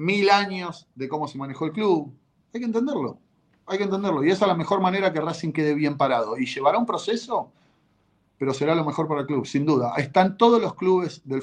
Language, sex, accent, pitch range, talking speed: Spanish, male, Argentinian, 135-180 Hz, 225 wpm